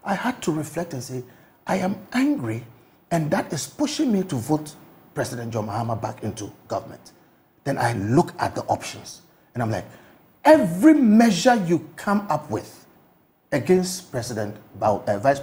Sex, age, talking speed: male, 50-69, 165 wpm